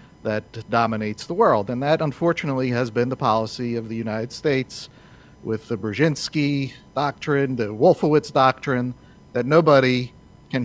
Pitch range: 115-155 Hz